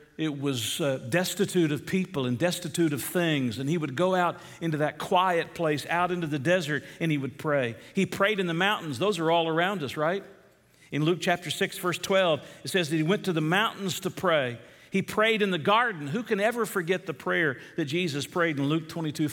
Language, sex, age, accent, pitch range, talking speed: English, male, 50-69, American, 150-180 Hz, 220 wpm